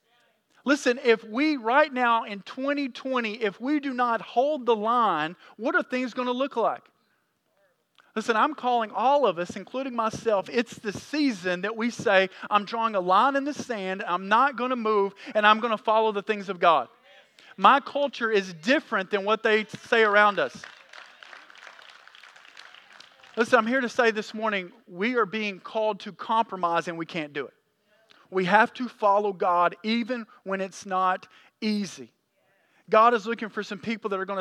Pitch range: 195-235 Hz